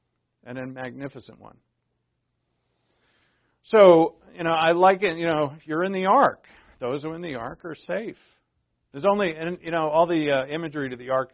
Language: English